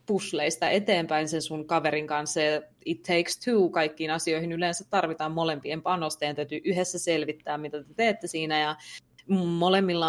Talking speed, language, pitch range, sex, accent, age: 150 wpm, Finnish, 155-190 Hz, female, native, 20-39